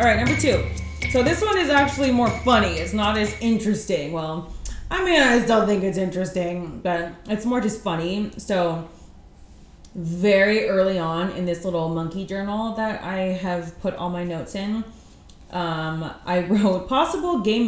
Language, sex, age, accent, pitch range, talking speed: English, female, 20-39, American, 160-220 Hz, 170 wpm